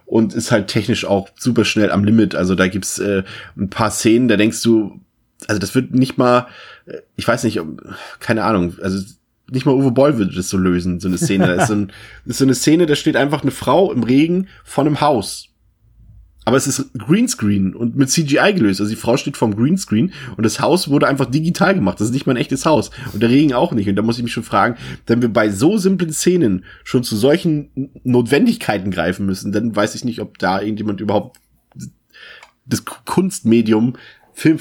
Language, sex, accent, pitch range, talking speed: German, male, German, 100-125 Hz, 210 wpm